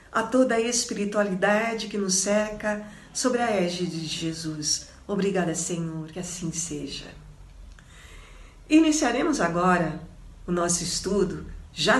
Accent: Brazilian